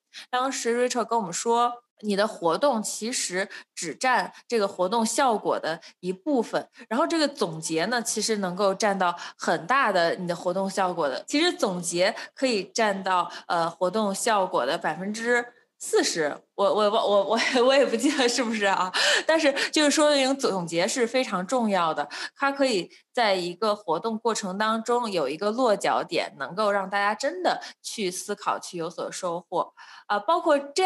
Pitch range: 185-255 Hz